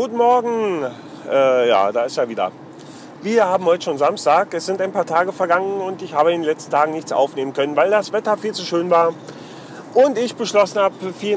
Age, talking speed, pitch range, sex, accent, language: 40-59, 215 wpm, 145-180 Hz, male, German, German